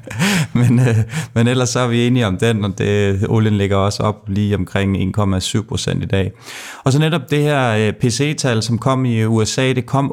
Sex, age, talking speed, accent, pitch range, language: male, 30-49, 200 wpm, native, 100-120 Hz, Danish